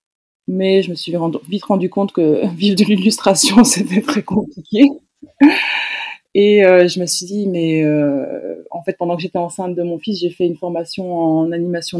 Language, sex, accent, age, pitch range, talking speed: French, female, French, 20-39, 165-205 Hz, 175 wpm